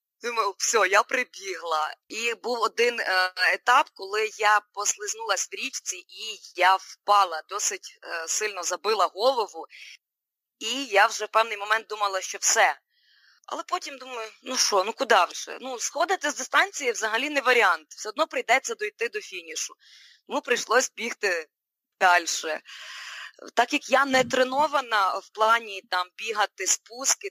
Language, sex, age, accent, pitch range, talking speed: Ukrainian, female, 20-39, native, 205-290 Hz, 145 wpm